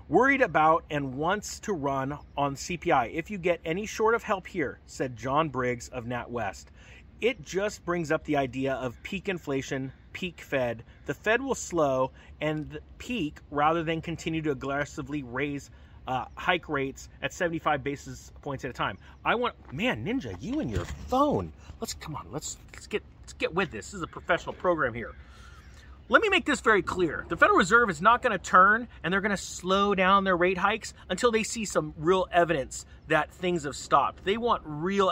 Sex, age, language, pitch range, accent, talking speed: male, 30-49, English, 135-195 Hz, American, 190 wpm